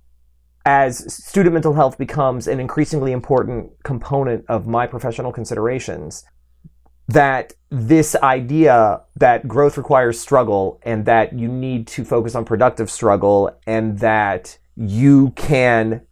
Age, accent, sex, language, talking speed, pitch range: 30-49, American, male, English, 125 wpm, 110-140 Hz